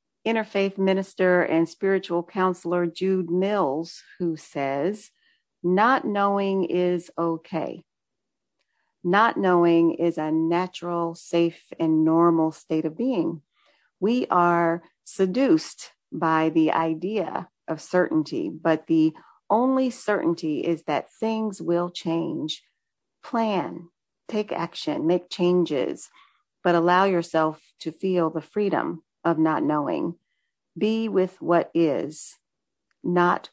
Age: 40-59